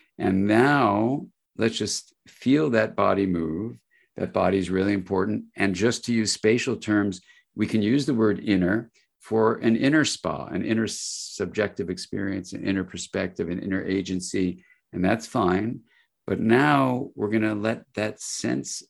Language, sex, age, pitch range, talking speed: English, male, 50-69, 95-110 Hz, 160 wpm